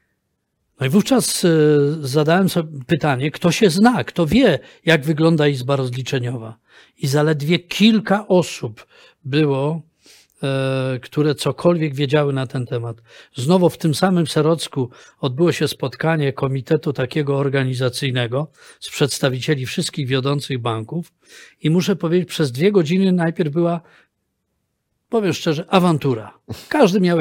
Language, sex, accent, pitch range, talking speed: Polish, male, native, 135-175 Hz, 120 wpm